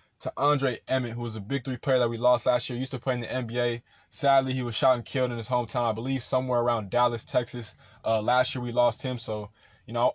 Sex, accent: male, American